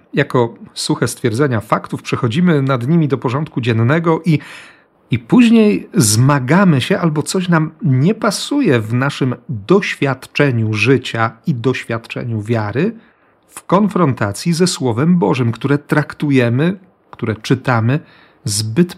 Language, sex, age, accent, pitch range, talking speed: Polish, male, 40-59, native, 115-150 Hz, 115 wpm